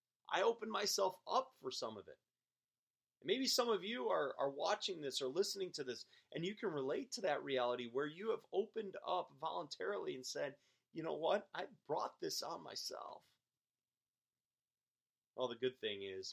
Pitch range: 105-145 Hz